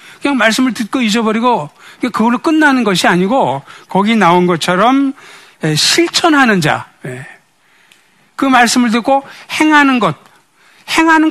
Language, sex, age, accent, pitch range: Korean, male, 60-79, native, 165-265 Hz